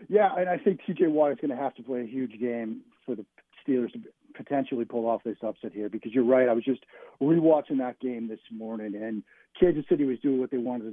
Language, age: English, 40-59